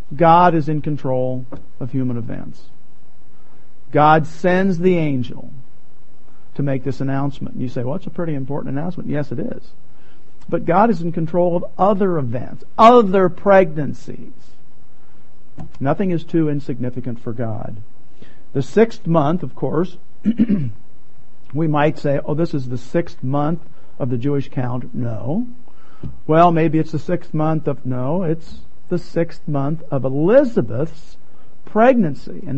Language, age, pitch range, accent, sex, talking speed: English, 50-69, 140-180 Hz, American, male, 145 wpm